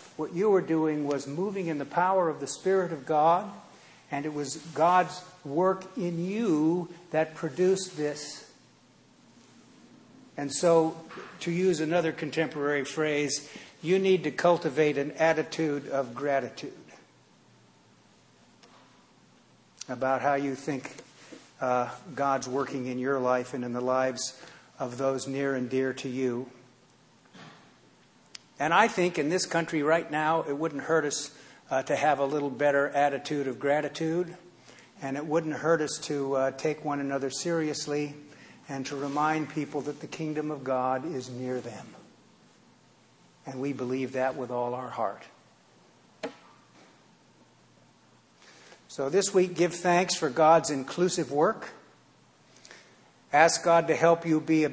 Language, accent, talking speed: English, American, 140 wpm